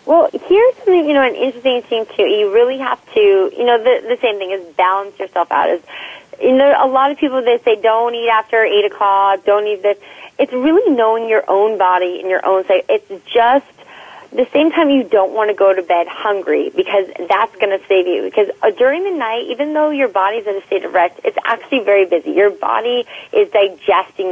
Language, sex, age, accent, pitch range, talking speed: English, female, 30-49, American, 195-275 Hz, 220 wpm